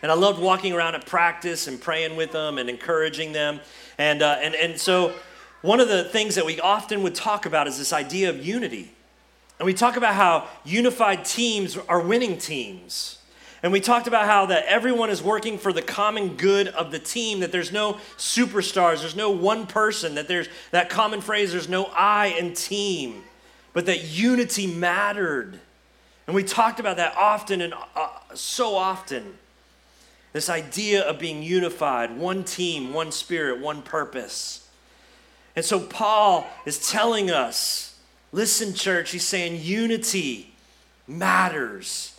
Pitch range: 165-200 Hz